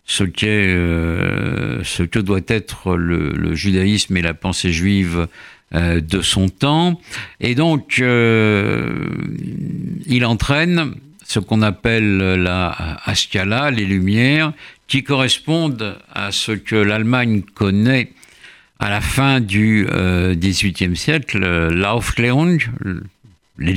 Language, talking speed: French, 115 wpm